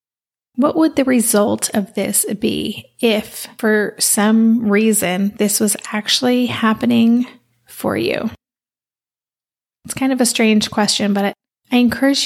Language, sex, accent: English, female, American